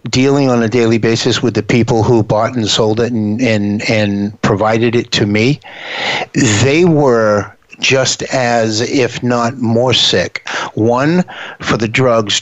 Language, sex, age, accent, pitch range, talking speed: English, male, 50-69, American, 110-135 Hz, 155 wpm